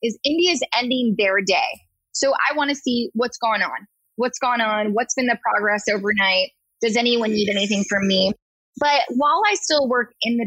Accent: American